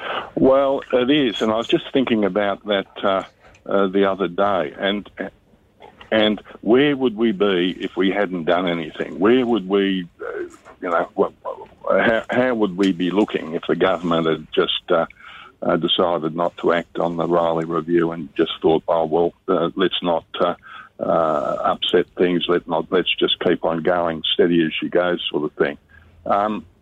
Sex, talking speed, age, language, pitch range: male, 180 wpm, 60-79, English, 85-110 Hz